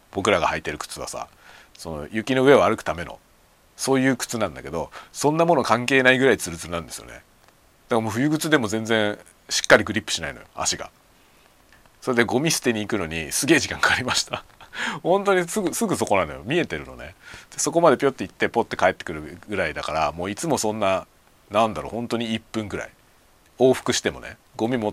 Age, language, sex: 40-59, Japanese, male